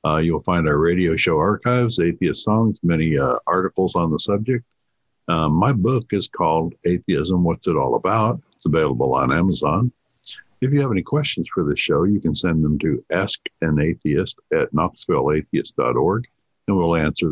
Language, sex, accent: English, male, American